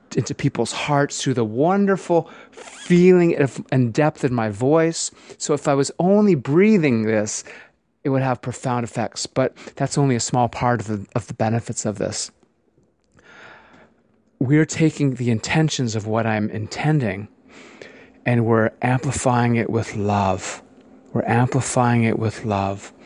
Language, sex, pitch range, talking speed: English, male, 115-140 Hz, 145 wpm